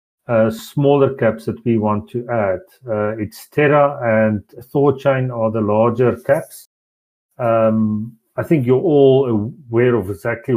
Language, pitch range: English, 110-130 Hz